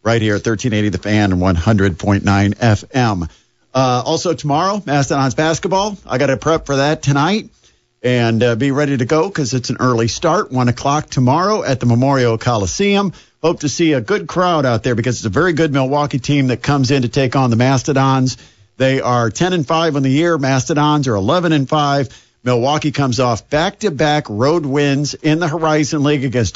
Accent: American